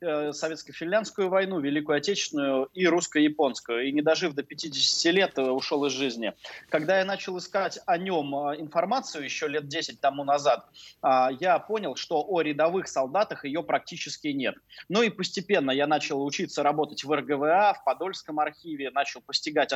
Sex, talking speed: male, 155 wpm